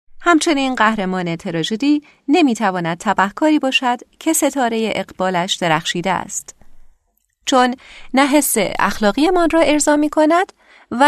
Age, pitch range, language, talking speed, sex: 30-49, 190-280 Hz, Persian, 110 wpm, female